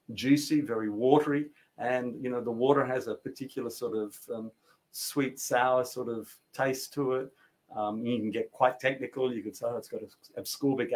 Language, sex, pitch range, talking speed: English, male, 115-145 Hz, 185 wpm